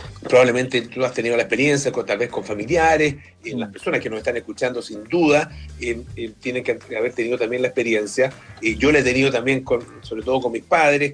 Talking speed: 225 wpm